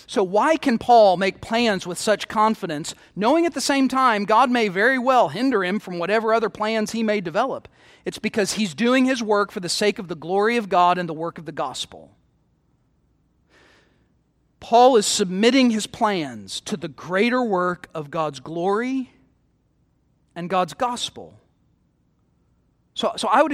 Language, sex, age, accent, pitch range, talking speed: English, male, 40-59, American, 195-255 Hz, 170 wpm